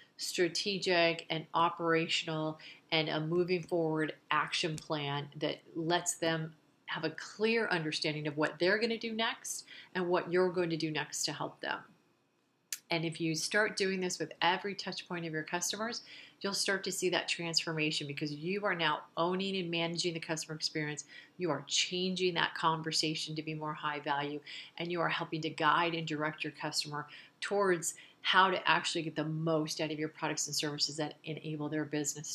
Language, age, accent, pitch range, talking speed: English, 40-59, American, 155-180 Hz, 185 wpm